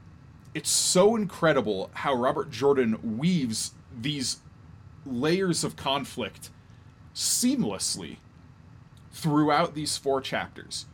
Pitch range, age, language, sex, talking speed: 110-145 Hz, 20-39, English, male, 90 wpm